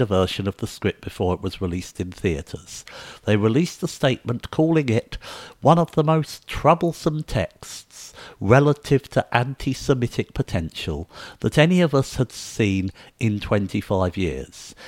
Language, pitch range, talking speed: English, 100-135 Hz, 140 wpm